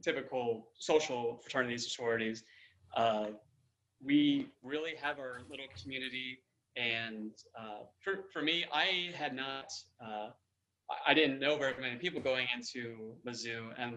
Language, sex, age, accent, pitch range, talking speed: English, male, 20-39, American, 115-135 Hz, 125 wpm